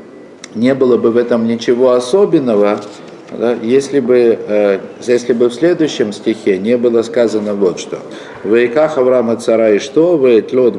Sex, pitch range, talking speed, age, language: male, 115-155 Hz, 155 wpm, 50-69, Russian